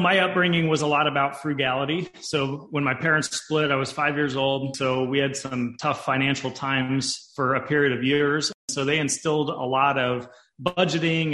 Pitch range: 130-145 Hz